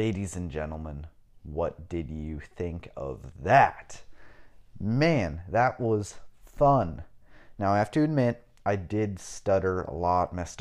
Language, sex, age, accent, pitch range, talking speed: English, male, 30-49, American, 85-105 Hz, 135 wpm